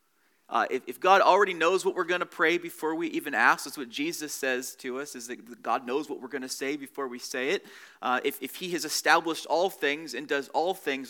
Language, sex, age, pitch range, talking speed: English, male, 30-49, 135-225 Hz, 255 wpm